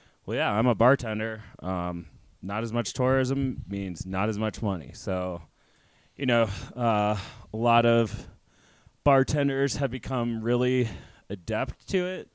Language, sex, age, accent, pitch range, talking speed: English, male, 20-39, American, 95-120 Hz, 140 wpm